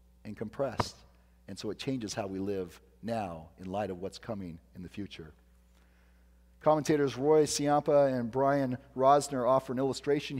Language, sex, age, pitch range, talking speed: English, male, 40-59, 115-150 Hz, 155 wpm